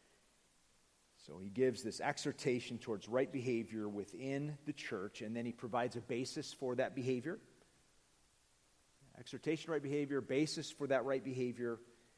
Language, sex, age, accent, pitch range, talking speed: English, male, 40-59, American, 105-140 Hz, 140 wpm